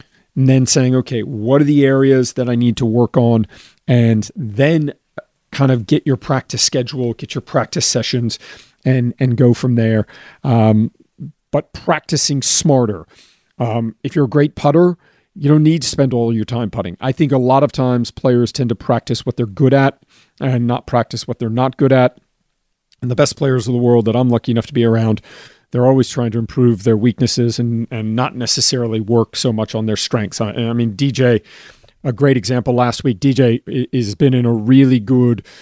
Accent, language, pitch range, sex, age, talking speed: American, English, 115-130 Hz, male, 40-59, 200 wpm